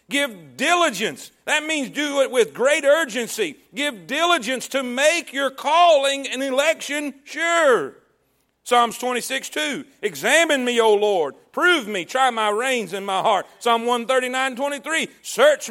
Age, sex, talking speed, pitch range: 50-69, male, 135 wpm, 215-280 Hz